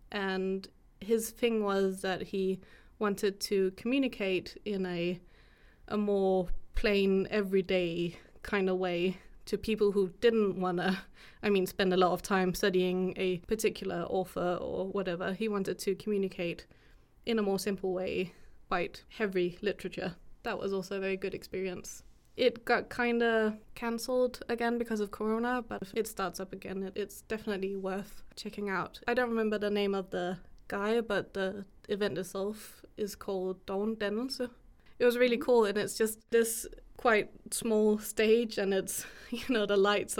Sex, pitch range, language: female, 190-220 Hz, English